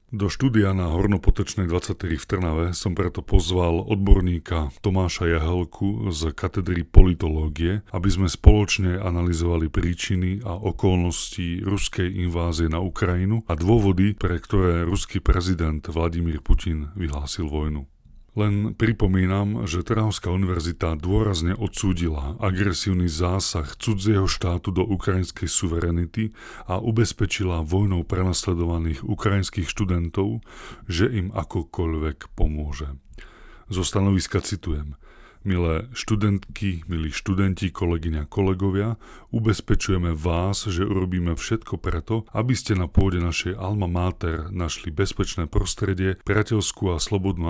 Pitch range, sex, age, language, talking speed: 85-100 Hz, male, 30-49, Slovak, 110 wpm